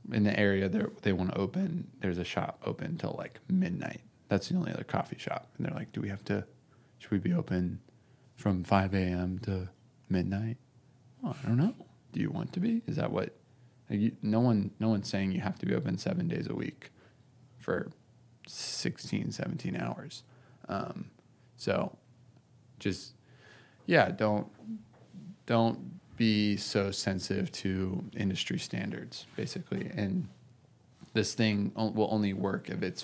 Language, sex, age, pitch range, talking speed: English, male, 20-39, 100-125 Hz, 160 wpm